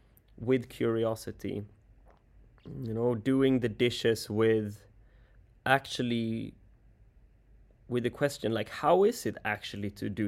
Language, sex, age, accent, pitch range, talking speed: English, male, 20-39, Swedish, 105-125 Hz, 110 wpm